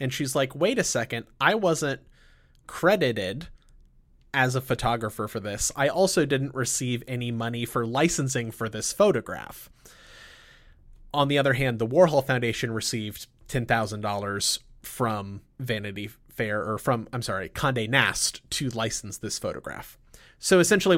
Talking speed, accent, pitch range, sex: 140 wpm, American, 110-140 Hz, male